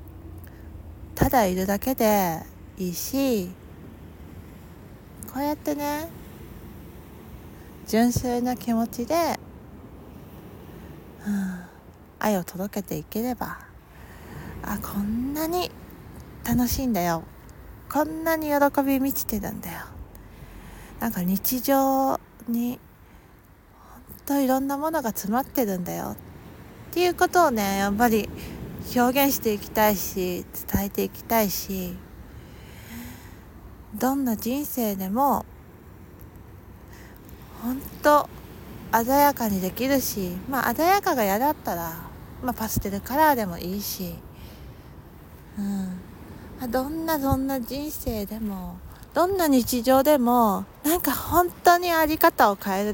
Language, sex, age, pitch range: Japanese, female, 40-59, 185-275 Hz